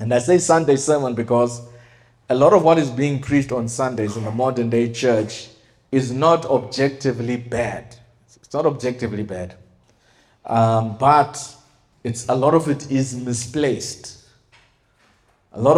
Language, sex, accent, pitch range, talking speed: English, male, South African, 115-135 Hz, 145 wpm